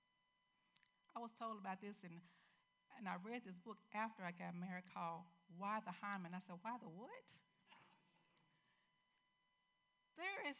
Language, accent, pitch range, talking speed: English, American, 180-230 Hz, 145 wpm